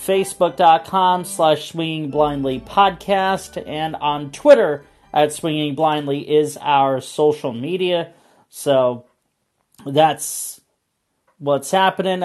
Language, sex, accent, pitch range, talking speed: English, male, American, 140-180 Hz, 95 wpm